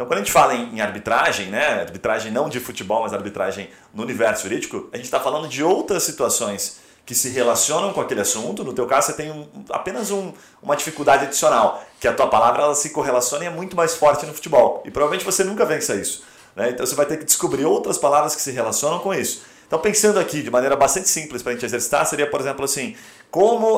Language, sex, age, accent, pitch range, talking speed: Portuguese, male, 30-49, Brazilian, 135-180 Hz, 230 wpm